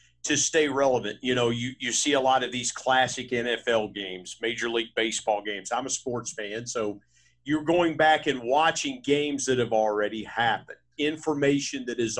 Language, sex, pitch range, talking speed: English, male, 105-145 Hz, 180 wpm